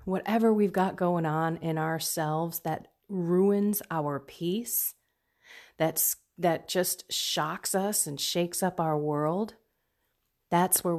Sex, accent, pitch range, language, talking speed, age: female, American, 155-200 Hz, English, 120 wpm, 30-49